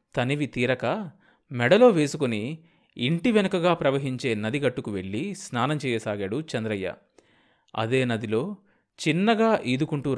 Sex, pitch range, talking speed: male, 110-150 Hz, 95 wpm